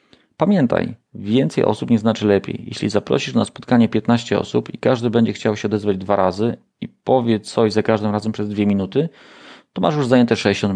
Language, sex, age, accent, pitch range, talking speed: Polish, male, 40-59, native, 100-160 Hz, 190 wpm